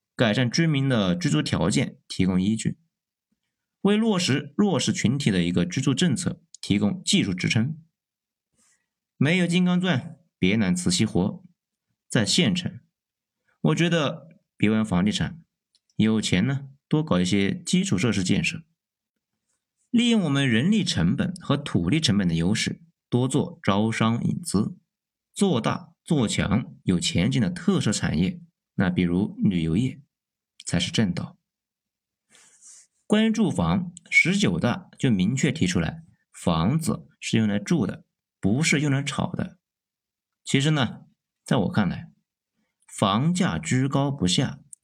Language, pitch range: Chinese, 110-180 Hz